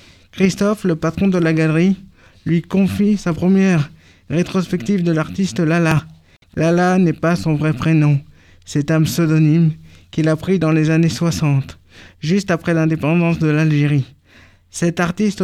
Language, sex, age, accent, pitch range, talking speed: French, male, 50-69, French, 155-185 Hz, 145 wpm